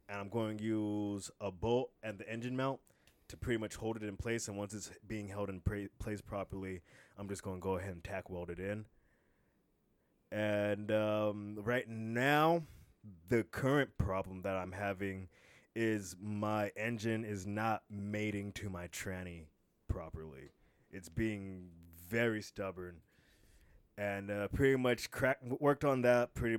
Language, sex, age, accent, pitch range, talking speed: English, male, 20-39, American, 95-110 Hz, 160 wpm